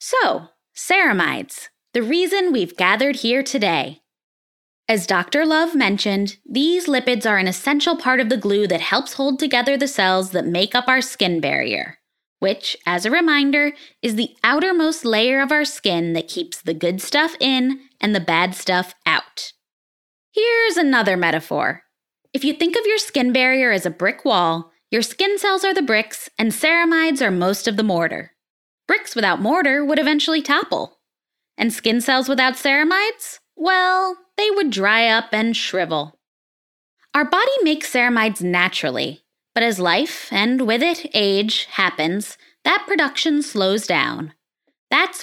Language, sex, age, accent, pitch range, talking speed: English, female, 10-29, American, 195-310 Hz, 155 wpm